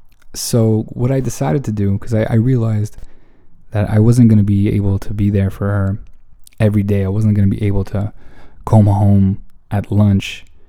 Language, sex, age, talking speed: English, male, 20-39, 195 wpm